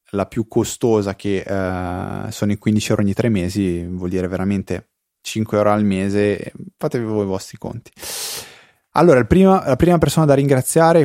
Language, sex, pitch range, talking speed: Italian, male, 100-120 Hz, 175 wpm